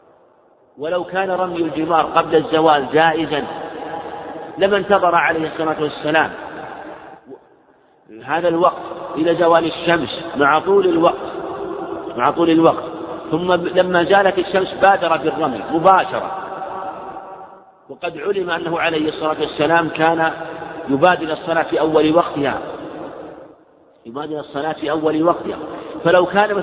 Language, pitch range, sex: Arabic, 155-185 Hz, male